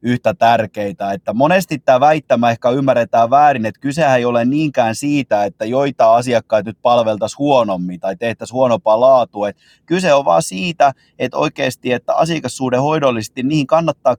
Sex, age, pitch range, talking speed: male, 30-49, 110-140 Hz, 150 wpm